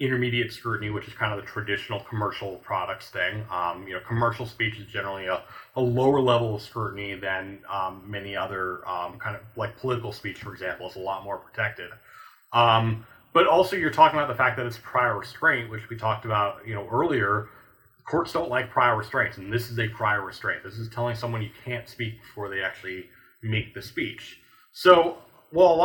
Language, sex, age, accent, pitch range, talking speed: English, male, 30-49, American, 105-130 Hz, 200 wpm